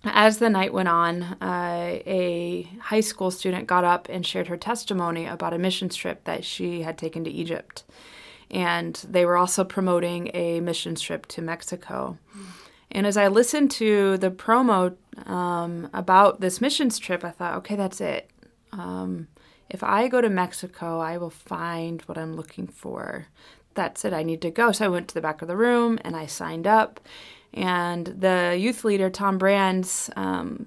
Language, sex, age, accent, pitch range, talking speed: English, female, 20-39, American, 170-205 Hz, 180 wpm